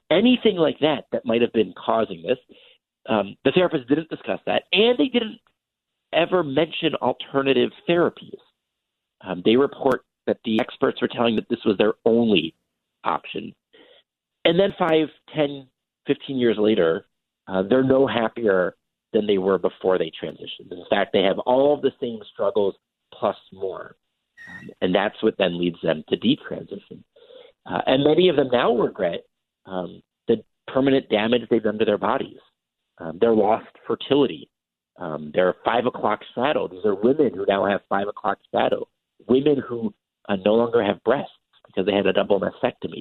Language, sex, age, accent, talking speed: English, male, 50-69, American, 165 wpm